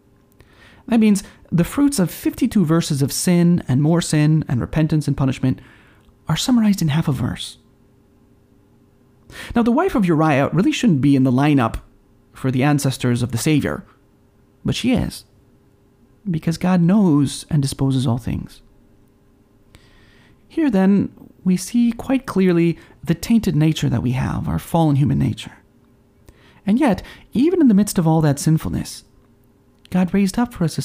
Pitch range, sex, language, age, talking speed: 125-180 Hz, male, English, 30-49, 160 wpm